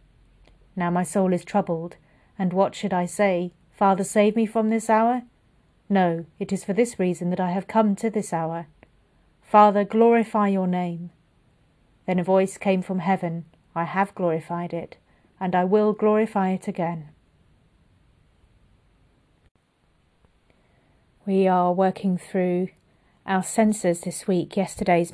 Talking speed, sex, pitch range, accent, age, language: 140 wpm, female, 180-210 Hz, British, 40-59, English